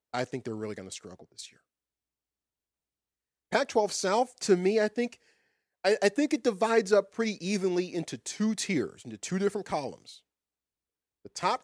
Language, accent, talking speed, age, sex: English, American, 165 wpm, 40-59, male